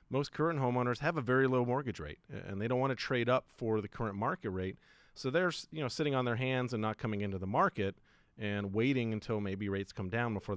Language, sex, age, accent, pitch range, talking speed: English, male, 40-59, American, 100-130 Hz, 235 wpm